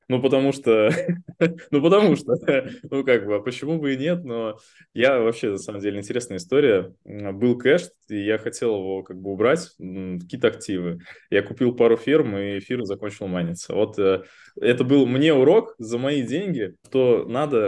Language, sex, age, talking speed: Russian, male, 20-39, 170 wpm